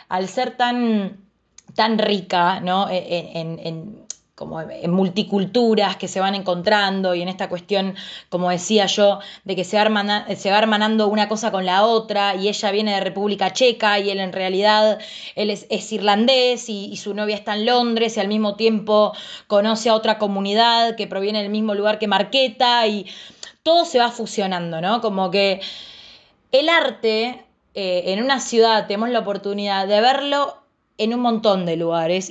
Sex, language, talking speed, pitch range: female, Spanish, 175 wpm, 185-220 Hz